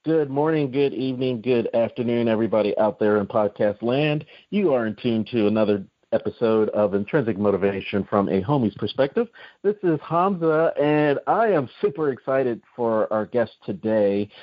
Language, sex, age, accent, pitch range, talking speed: English, male, 40-59, American, 100-145 Hz, 160 wpm